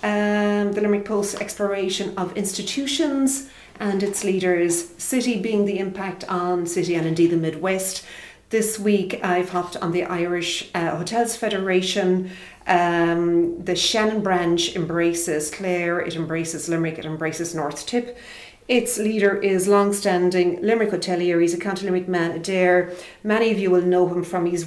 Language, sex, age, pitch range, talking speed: English, female, 40-59, 170-195 Hz, 155 wpm